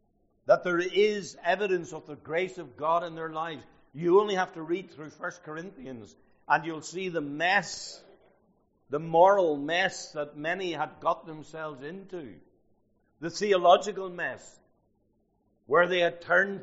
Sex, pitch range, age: male, 105-155 Hz, 60-79